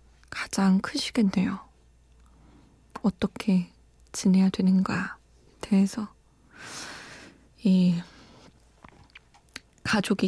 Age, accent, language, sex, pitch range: 20-39, native, Korean, female, 190-225 Hz